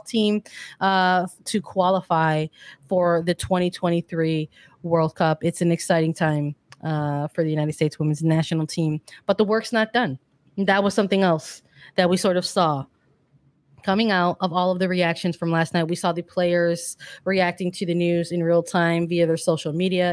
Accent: American